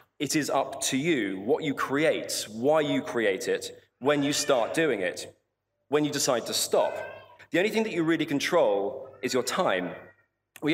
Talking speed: 185 wpm